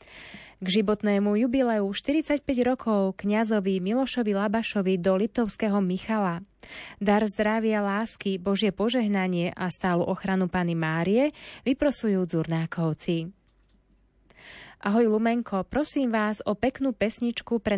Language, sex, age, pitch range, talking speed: Slovak, female, 20-39, 185-225 Hz, 105 wpm